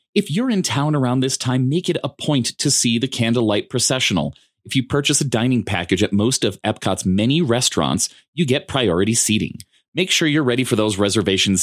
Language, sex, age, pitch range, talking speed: English, male, 30-49, 105-155 Hz, 200 wpm